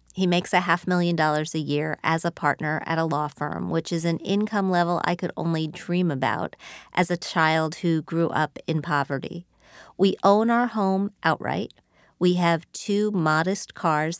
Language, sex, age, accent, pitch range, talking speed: English, female, 40-59, American, 160-195 Hz, 180 wpm